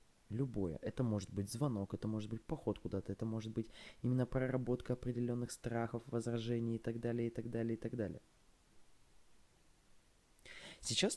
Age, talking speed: 20-39, 150 wpm